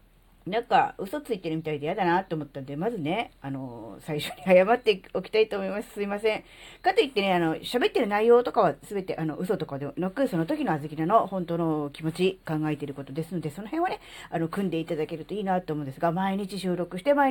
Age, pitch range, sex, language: 40-59, 155-260 Hz, female, Japanese